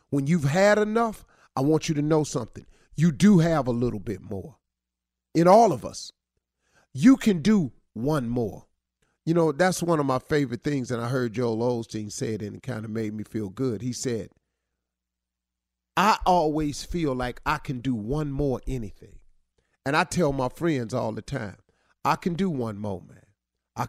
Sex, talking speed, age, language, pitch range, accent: male, 190 wpm, 40-59, English, 95-160 Hz, American